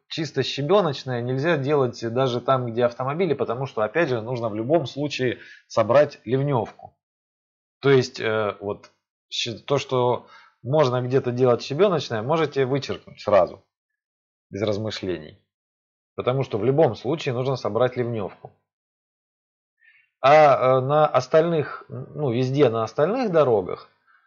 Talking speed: 120 wpm